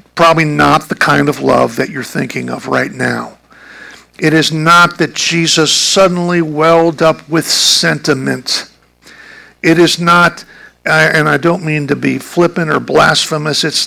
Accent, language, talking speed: American, English, 150 wpm